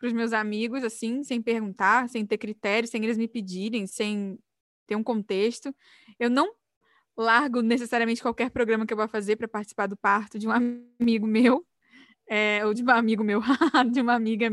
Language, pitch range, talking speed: Portuguese, 215-265 Hz, 185 wpm